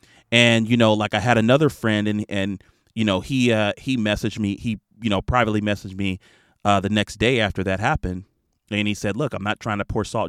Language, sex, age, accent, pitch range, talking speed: English, male, 30-49, American, 100-125 Hz, 235 wpm